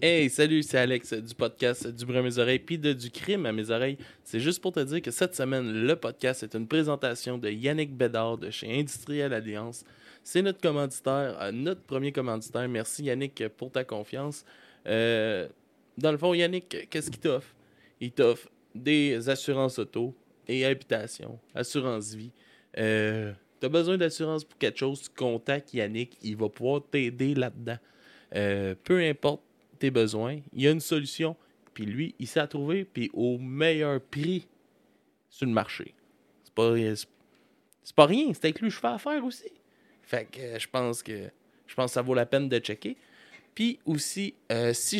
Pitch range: 115-160 Hz